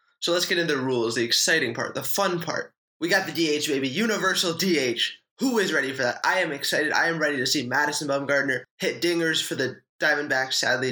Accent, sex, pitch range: American, male, 135-180 Hz